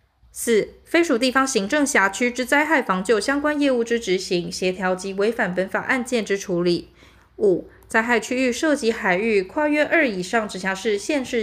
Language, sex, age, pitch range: Chinese, female, 20-39, 190-270 Hz